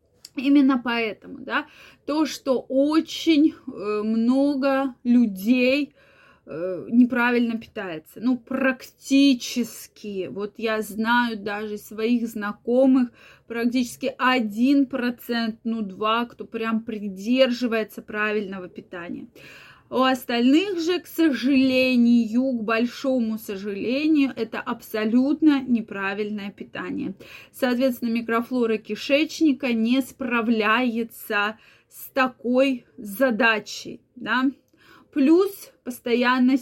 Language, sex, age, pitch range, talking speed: Russian, female, 20-39, 225-265 Hz, 80 wpm